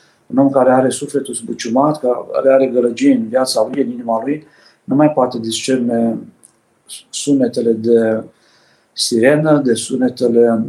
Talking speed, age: 135 wpm, 50-69